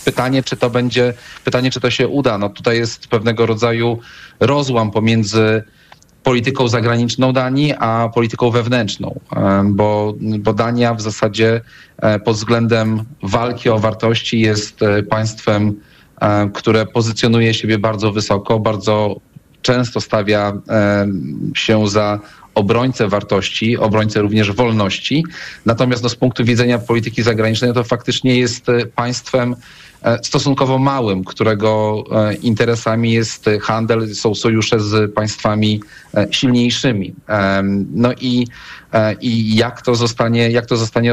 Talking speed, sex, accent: 115 wpm, male, native